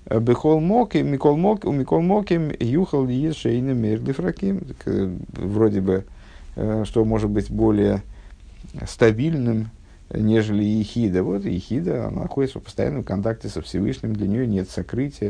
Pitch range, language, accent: 95-125 Hz, Russian, native